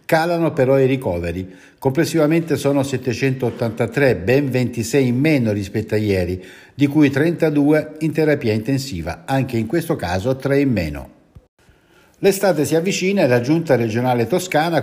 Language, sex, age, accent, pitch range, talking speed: Italian, male, 60-79, native, 105-145 Hz, 140 wpm